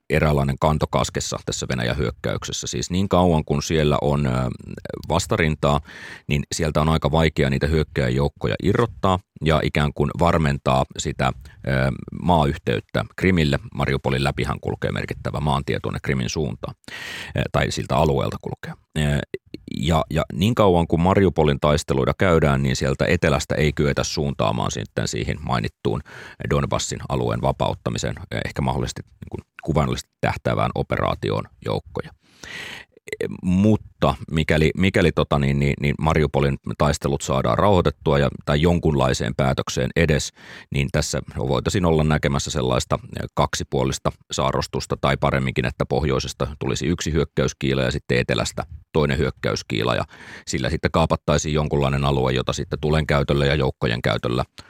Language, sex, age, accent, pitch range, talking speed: Finnish, male, 30-49, native, 70-80 Hz, 125 wpm